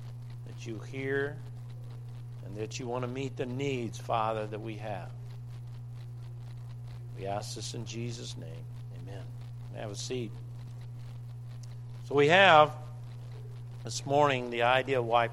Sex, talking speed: male, 135 wpm